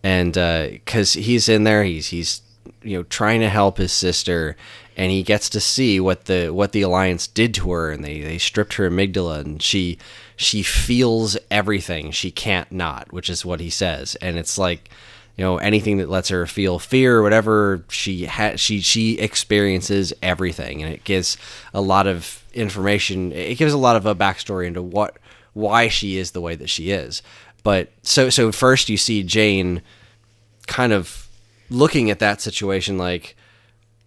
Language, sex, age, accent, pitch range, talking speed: English, male, 20-39, American, 90-110 Hz, 185 wpm